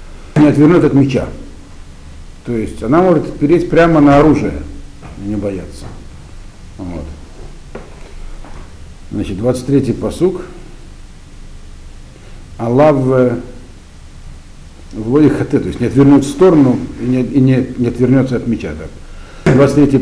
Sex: male